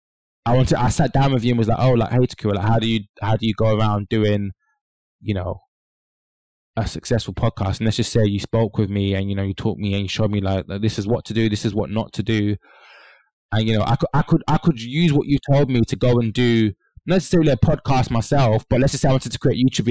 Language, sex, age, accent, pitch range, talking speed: English, male, 20-39, British, 110-135 Hz, 265 wpm